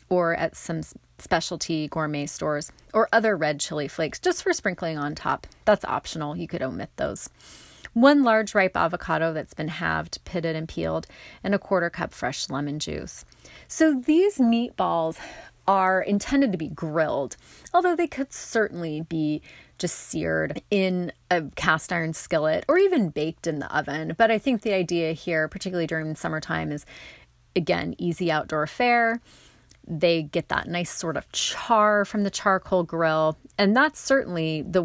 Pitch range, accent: 155-210 Hz, American